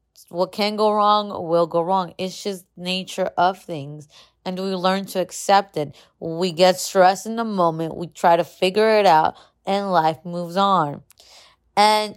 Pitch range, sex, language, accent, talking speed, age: 160-190 Hz, female, English, American, 175 wpm, 20-39